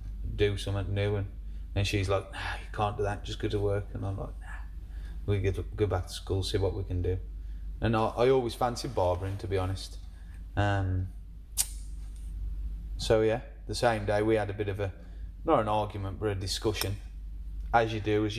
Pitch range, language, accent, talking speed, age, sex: 85-105 Hz, English, British, 200 wpm, 30-49, male